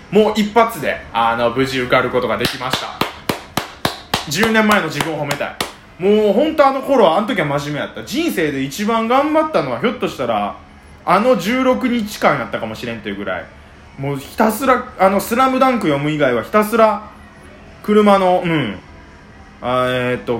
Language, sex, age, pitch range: Japanese, male, 20-39, 115-180 Hz